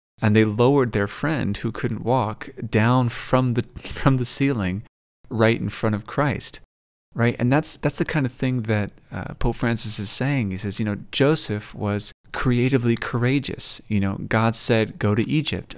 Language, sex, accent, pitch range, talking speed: English, male, American, 100-120 Hz, 185 wpm